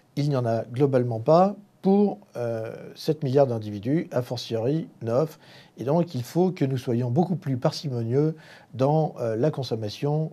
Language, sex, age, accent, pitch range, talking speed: French, male, 50-69, French, 125-165 Hz, 165 wpm